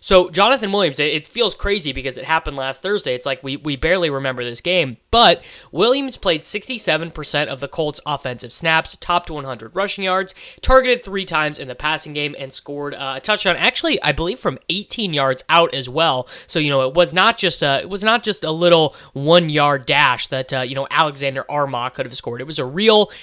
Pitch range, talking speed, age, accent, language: 140-185 Hz, 210 wpm, 20-39, American, English